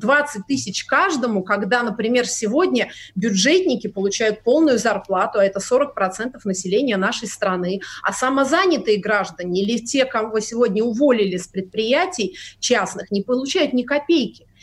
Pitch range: 210-275 Hz